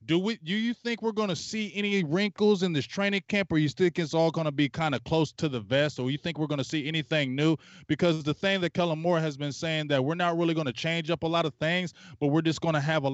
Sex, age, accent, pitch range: male, 20-39, American, 130-170 Hz